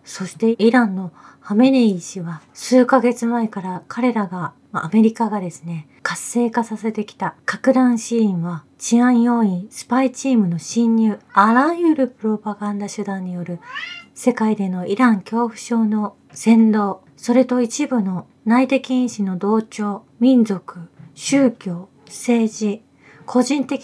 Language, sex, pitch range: Japanese, female, 195-255 Hz